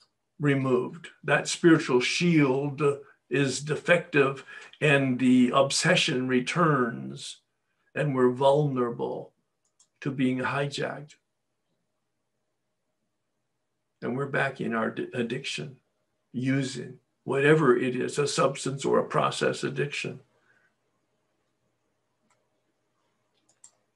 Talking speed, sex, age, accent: 80 wpm, male, 60-79, American